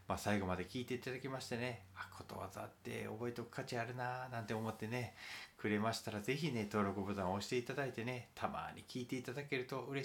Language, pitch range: Japanese, 95-140 Hz